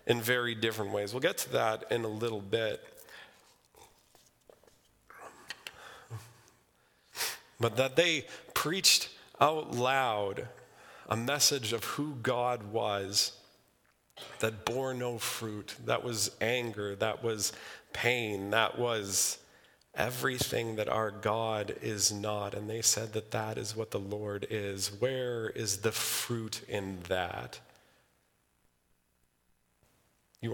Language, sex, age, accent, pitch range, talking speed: English, male, 40-59, American, 100-115 Hz, 115 wpm